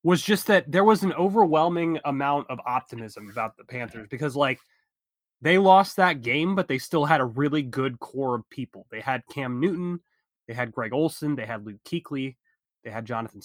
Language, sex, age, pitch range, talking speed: English, male, 20-39, 125-155 Hz, 195 wpm